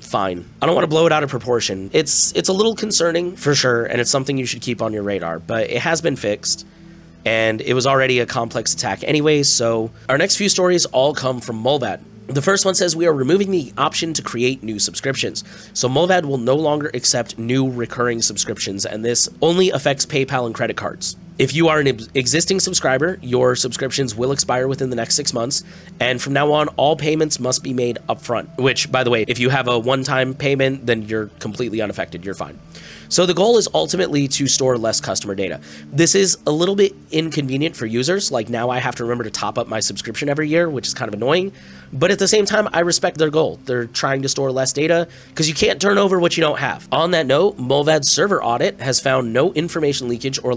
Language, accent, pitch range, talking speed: English, American, 120-160 Hz, 230 wpm